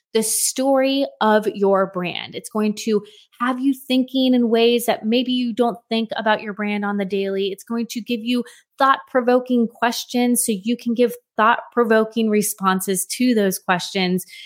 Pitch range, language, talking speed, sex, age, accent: 195-255 Hz, English, 175 wpm, female, 20-39, American